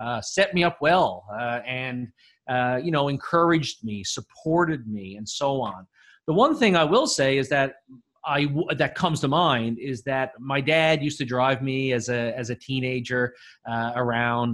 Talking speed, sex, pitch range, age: 185 wpm, male, 120-150 Hz, 30-49